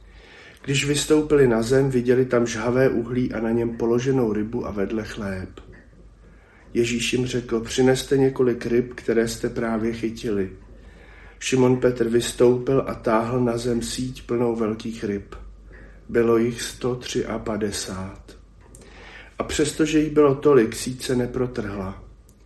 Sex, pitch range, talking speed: male, 110-130 Hz, 130 wpm